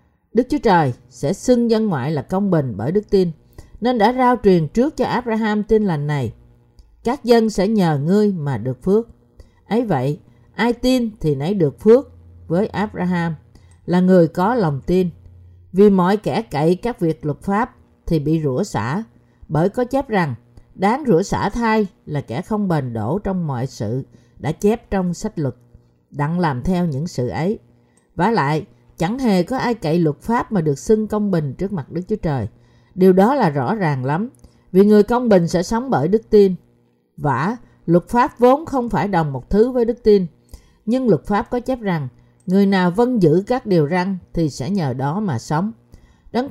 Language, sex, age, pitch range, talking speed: Vietnamese, female, 50-69, 150-215 Hz, 195 wpm